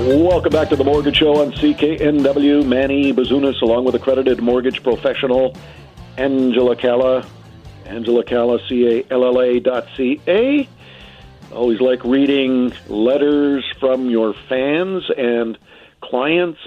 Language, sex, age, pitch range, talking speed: English, male, 50-69, 125-155 Hz, 130 wpm